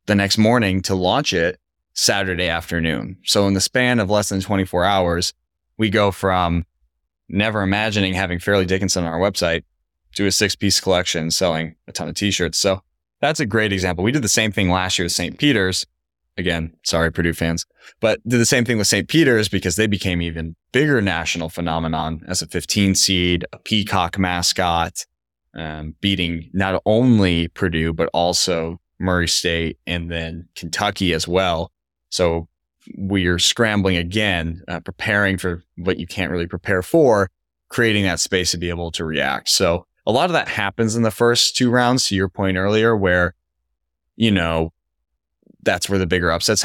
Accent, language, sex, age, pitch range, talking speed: American, English, male, 20-39, 85-100 Hz, 175 wpm